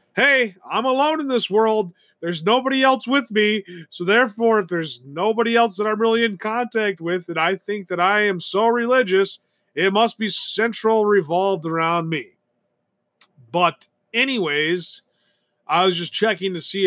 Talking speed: 165 wpm